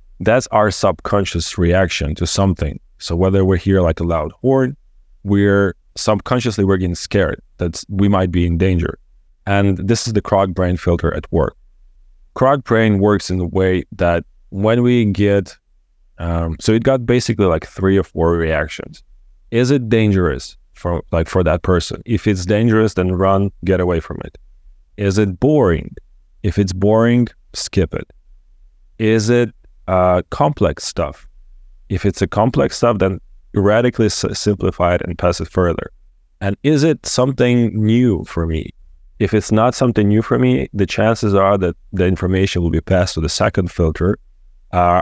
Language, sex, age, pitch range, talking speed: English, male, 30-49, 85-105 Hz, 165 wpm